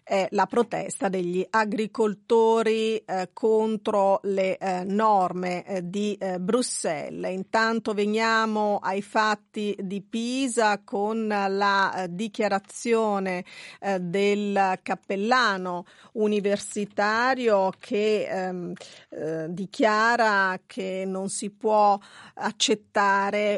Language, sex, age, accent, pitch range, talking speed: Italian, female, 40-59, native, 190-230 Hz, 95 wpm